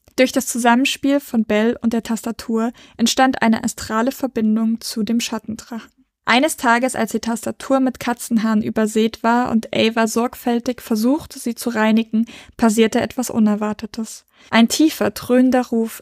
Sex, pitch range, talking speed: female, 220-250 Hz, 140 wpm